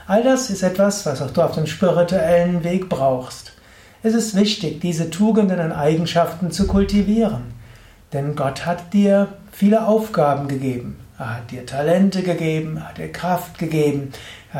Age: 60-79